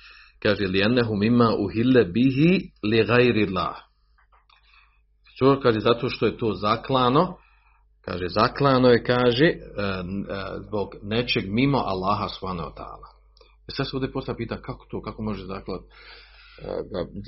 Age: 40-59